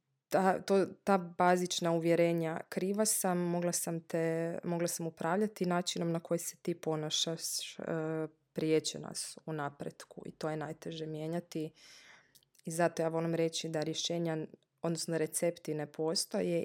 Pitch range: 160-180 Hz